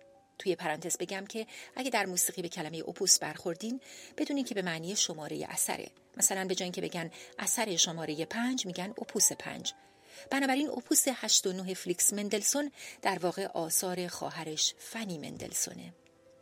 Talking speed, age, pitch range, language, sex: 145 wpm, 30-49, 175-240 Hz, Persian, female